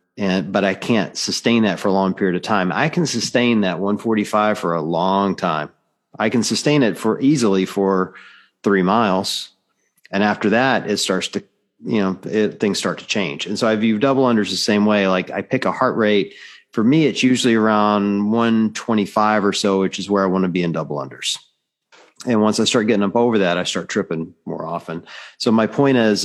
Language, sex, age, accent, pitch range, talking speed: English, male, 40-59, American, 95-110 Hz, 220 wpm